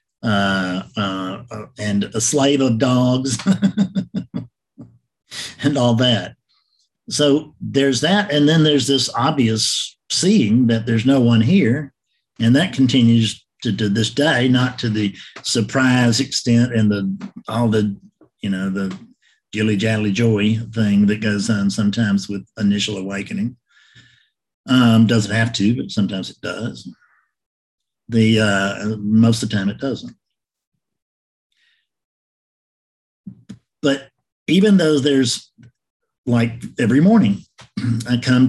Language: English